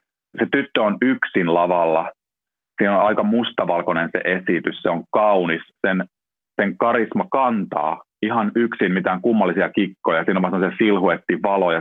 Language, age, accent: Finnish, 40-59, native